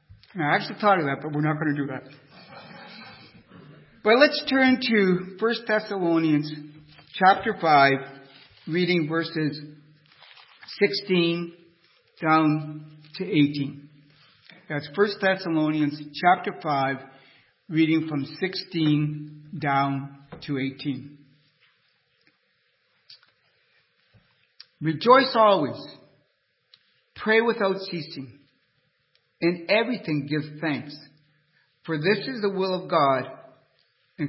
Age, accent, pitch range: 60-79, American, 145-185 Hz